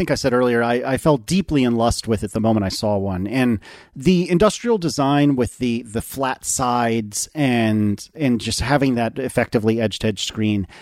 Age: 40-59